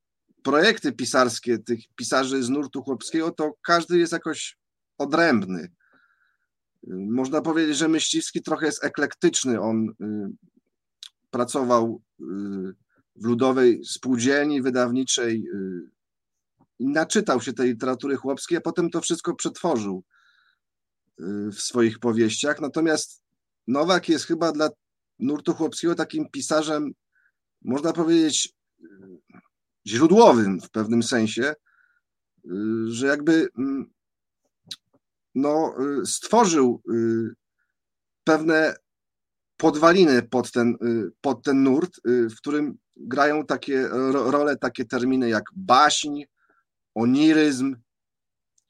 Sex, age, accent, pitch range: male, 40-59, native, 120-160 Hz